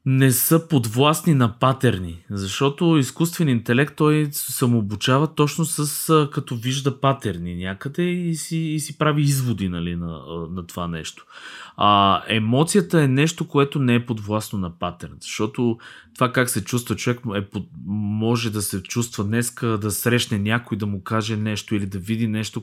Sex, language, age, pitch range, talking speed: male, Bulgarian, 20-39, 105-140 Hz, 160 wpm